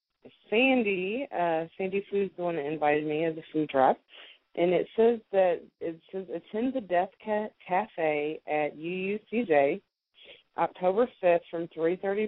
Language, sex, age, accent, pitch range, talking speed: English, female, 20-39, American, 155-195 Hz, 150 wpm